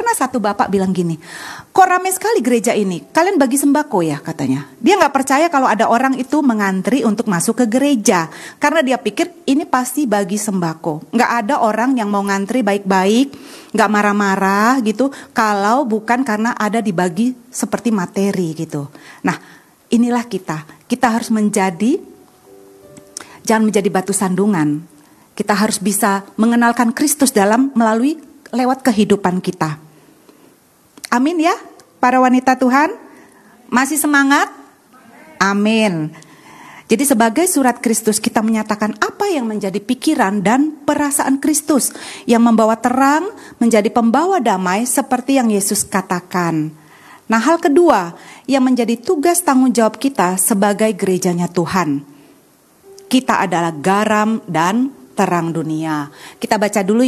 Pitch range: 195-270 Hz